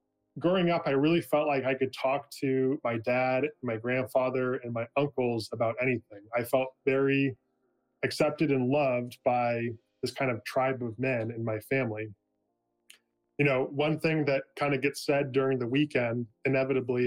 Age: 10-29